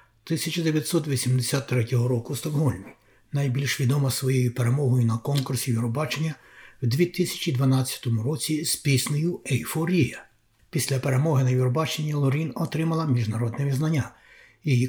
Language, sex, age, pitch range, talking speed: Ukrainian, male, 60-79, 125-150 Hz, 100 wpm